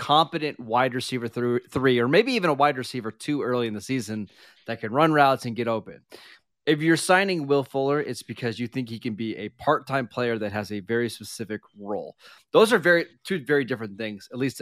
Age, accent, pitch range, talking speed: 30-49, American, 115-145 Hz, 220 wpm